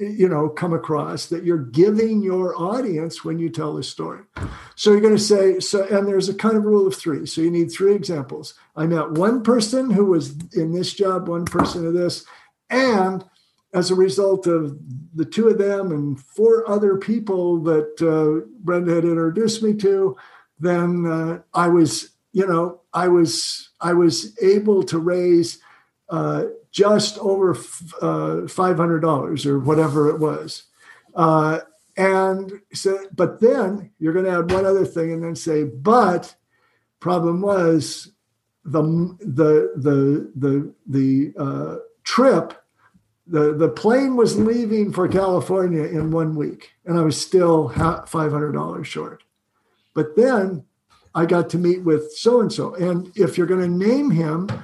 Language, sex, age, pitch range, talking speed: English, male, 60-79, 160-195 Hz, 155 wpm